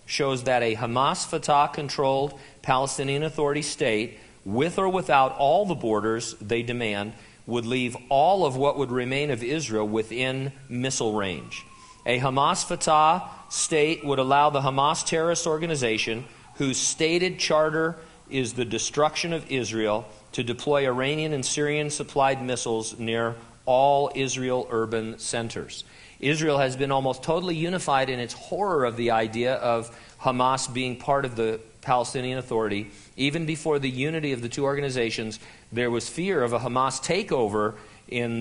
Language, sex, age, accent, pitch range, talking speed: English, male, 40-59, American, 115-145 Hz, 150 wpm